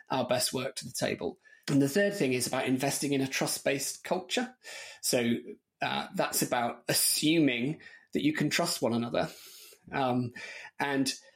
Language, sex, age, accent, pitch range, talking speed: English, male, 30-49, British, 125-160 Hz, 160 wpm